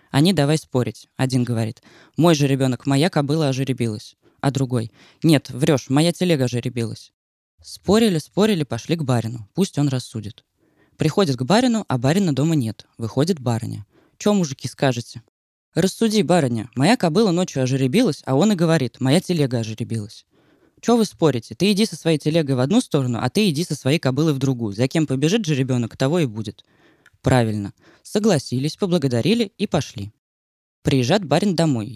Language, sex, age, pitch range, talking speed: Russian, female, 20-39, 125-170 Hz, 160 wpm